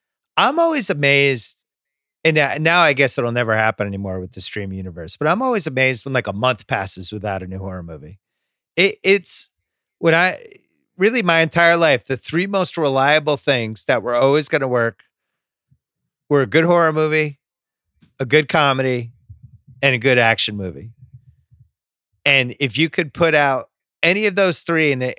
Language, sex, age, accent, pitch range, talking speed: English, male, 30-49, American, 125-170 Hz, 170 wpm